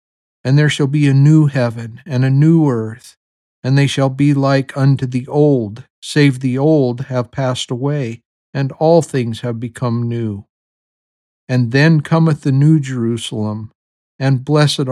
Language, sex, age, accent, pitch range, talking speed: English, male, 50-69, American, 120-140 Hz, 155 wpm